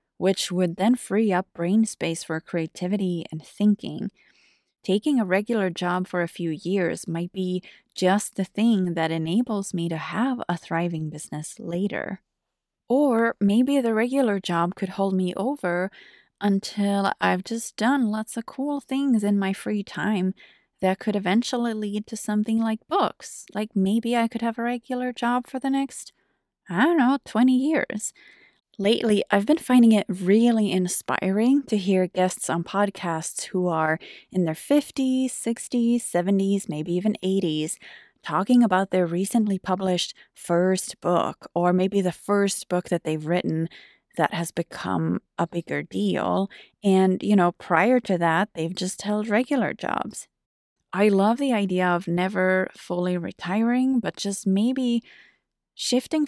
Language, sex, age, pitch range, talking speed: English, female, 20-39, 180-235 Hz, 155 wpm